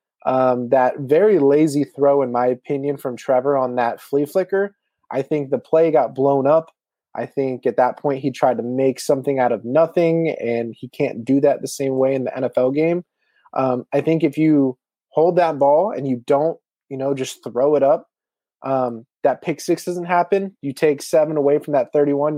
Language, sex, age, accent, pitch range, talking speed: English, male, 20-39, American, 135-160 Hz, 205 wpm